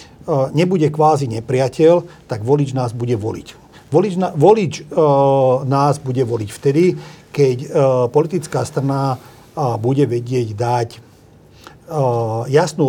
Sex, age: male, 40-59